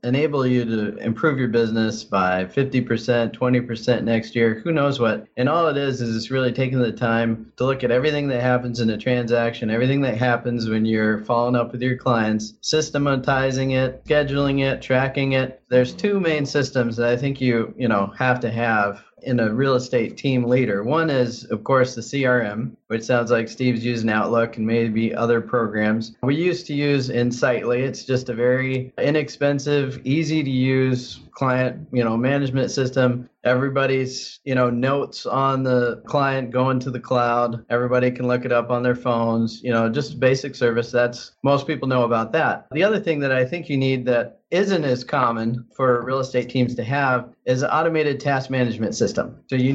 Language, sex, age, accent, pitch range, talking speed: English, male, 30-49, American, 120-140 Hz, 190 wpm